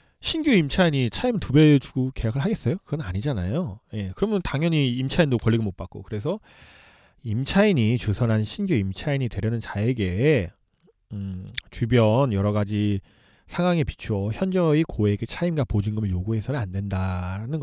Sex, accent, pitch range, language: male, native, 105-150 Hz, Korean